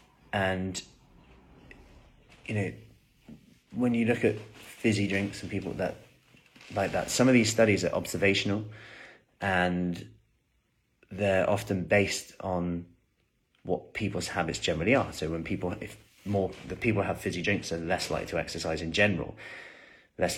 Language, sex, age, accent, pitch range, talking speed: English, male, 30-49, British, 85-105 Hz, 140 wpm